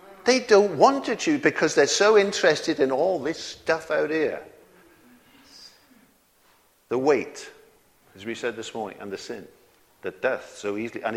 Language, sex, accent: English, male, British